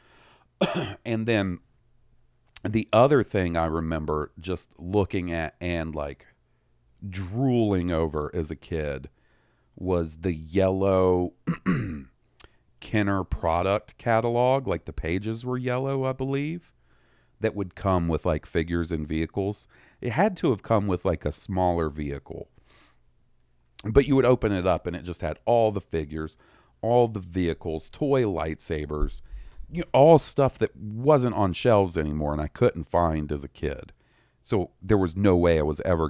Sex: male